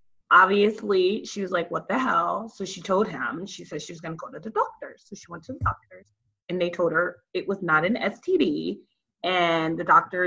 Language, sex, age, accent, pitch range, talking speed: English, female, 30-49, American, 180-255 Hz, 220 wpm